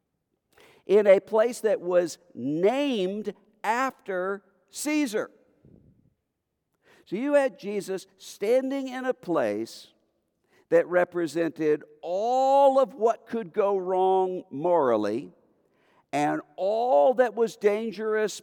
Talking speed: 100 wpm